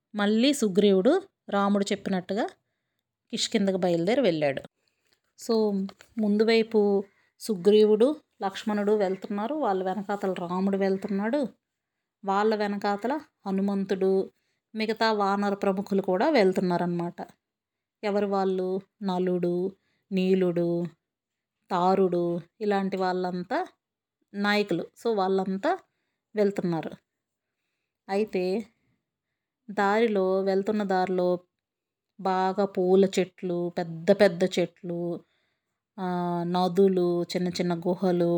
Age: 30-49